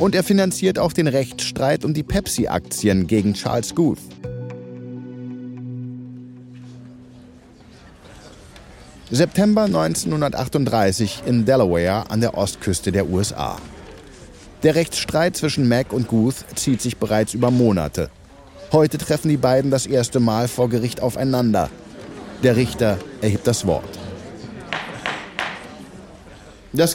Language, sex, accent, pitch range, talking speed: German, male, German, 120-165 Hz, 105 wpm